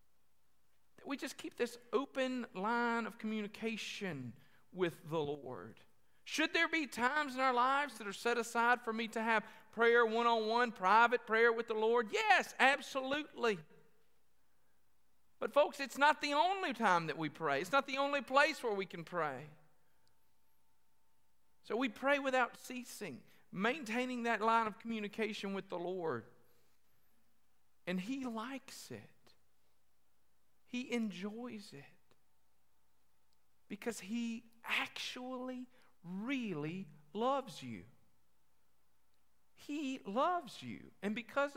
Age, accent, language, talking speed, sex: 50-69, American, English, 125 wpm, male